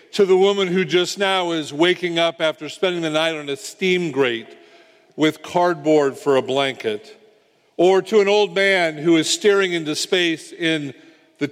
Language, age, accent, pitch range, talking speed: English, 50-69, American, 145-185 Hz, 175 wpm